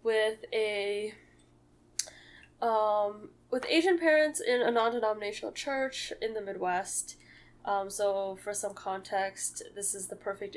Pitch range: 185-215 Hz